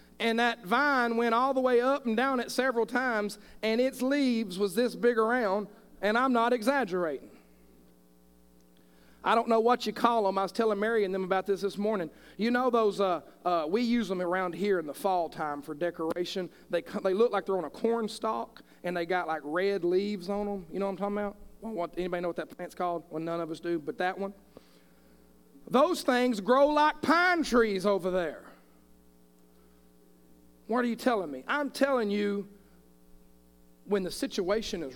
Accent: American